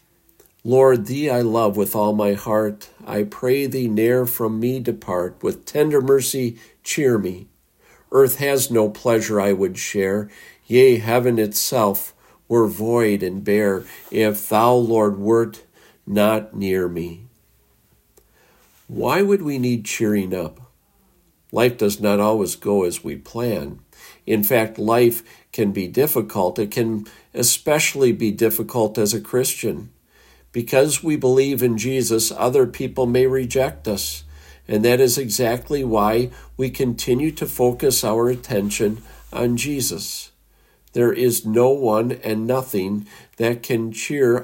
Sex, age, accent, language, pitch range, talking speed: male, 50-69, American, English, 105-125 Hz, 135 wpm